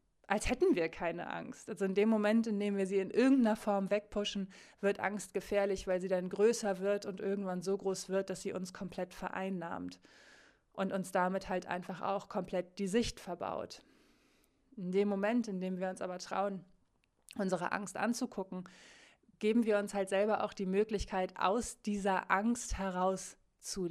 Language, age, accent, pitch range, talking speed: German, 20-39, German, 190-225 Hz, 175 wpm